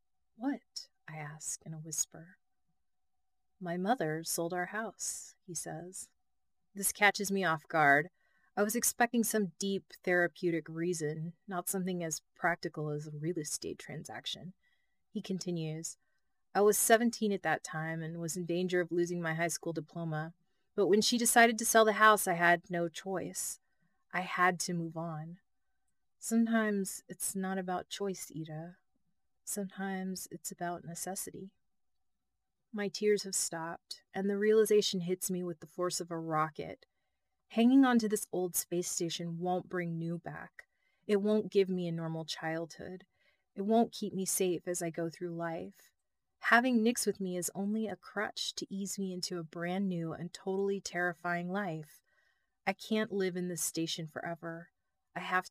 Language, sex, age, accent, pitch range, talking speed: English, female, 30-49, American, 170-200 Hz, 160 wpm